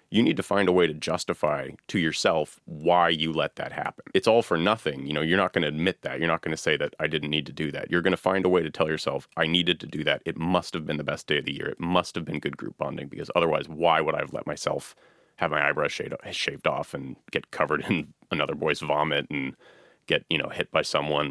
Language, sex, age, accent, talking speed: English, male, 30-49, American, 275 wpm